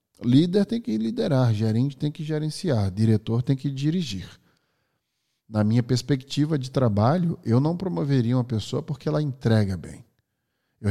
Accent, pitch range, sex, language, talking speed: Brazilian, 115-145 Hz, male, Portuguese, 150 wpm